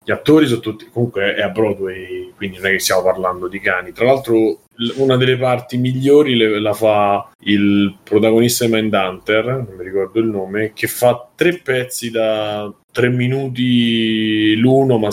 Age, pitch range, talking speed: 20-39, 105-120 Hz, 165 wpm